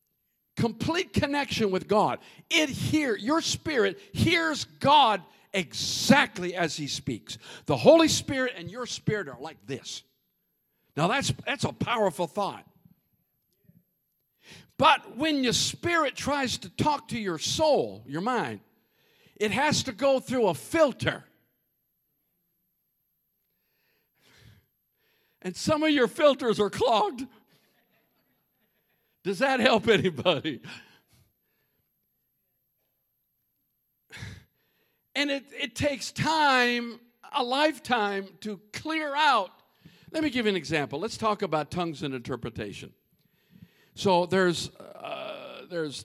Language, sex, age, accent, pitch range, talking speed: English, male, 50-69, American, 160-270 Hz, 110 wpm